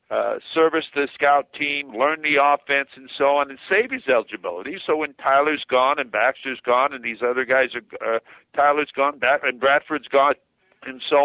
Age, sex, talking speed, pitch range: 50-69, male, 185 wpm, 130-155 Hz